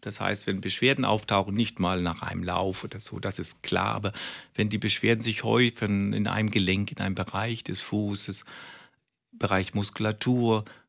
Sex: male